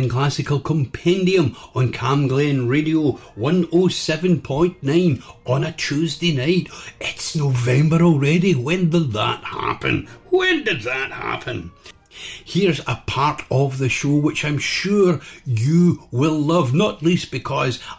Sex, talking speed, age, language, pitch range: male, 125 wpm, 60-79, English, 130-165 Hz